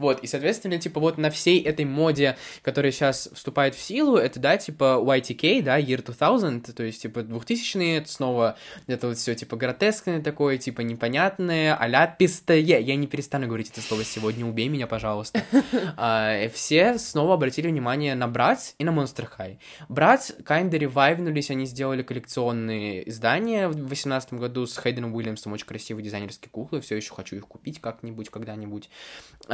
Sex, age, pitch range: male, 20-39, 115-155 Hz